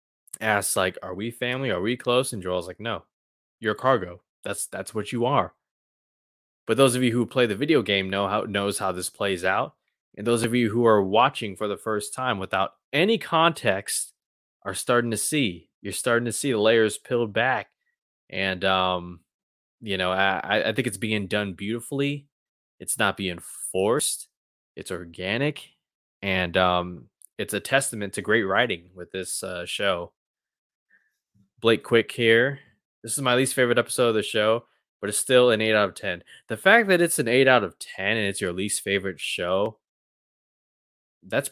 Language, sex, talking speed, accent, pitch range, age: English, male, 180 wpm, American, 95-125 Hz, 20-39